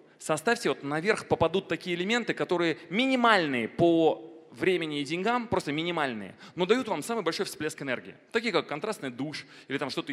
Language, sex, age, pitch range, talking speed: Russian, male, 30-49, 140-180 Hz, 165 wpm